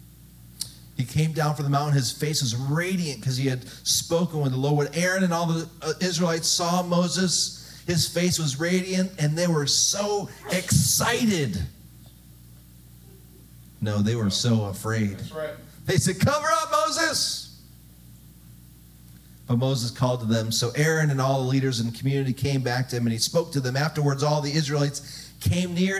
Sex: male